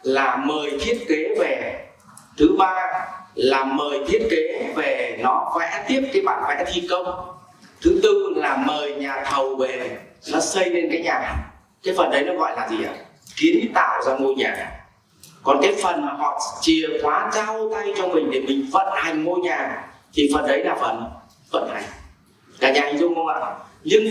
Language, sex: Vietnamese, male